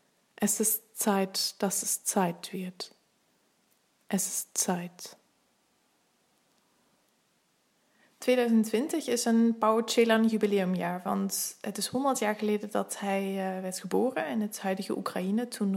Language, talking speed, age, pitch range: Dutch, 105 wpm, 20-39, 190-220 Hz